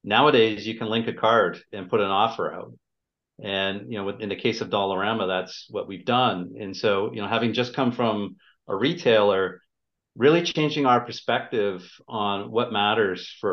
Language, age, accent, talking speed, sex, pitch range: English, 40-59, American, 180 wpm, male, 100-120 Hz